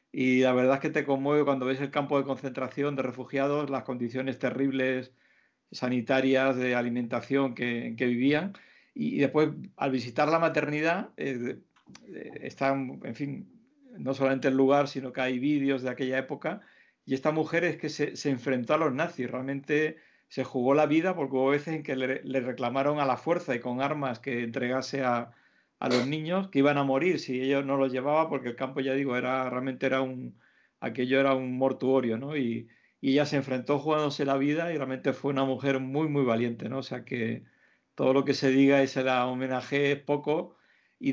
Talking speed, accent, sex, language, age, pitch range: 200 wpm, Spanish, male, Spanish, 50-69, 130-145 Hz